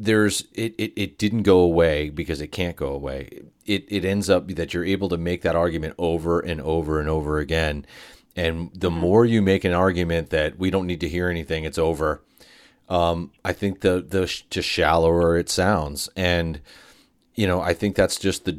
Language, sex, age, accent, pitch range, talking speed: English, male, 30-49, American, 80-90 Hz, 205 wpm